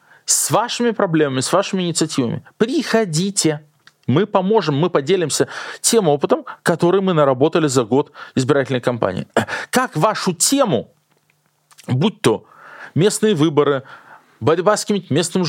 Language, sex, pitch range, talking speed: Russian, male, 140-180 Hz, 115 wpm